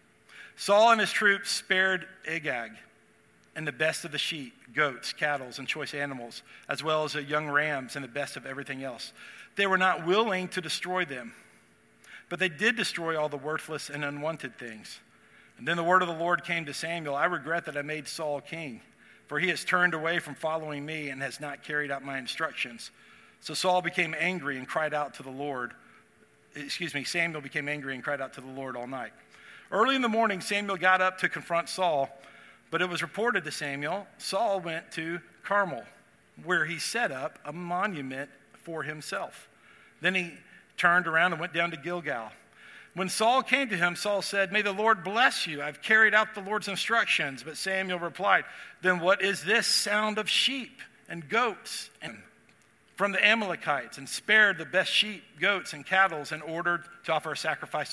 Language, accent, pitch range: English, American, 145-190 Hz